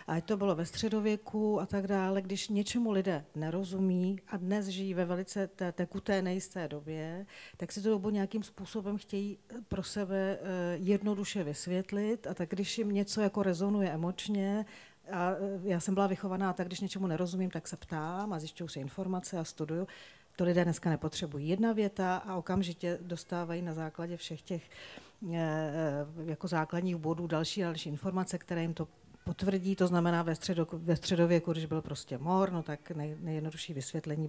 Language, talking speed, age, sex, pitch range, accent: Czech, 175 wpm, 40-59, female, 165-200 Hz, native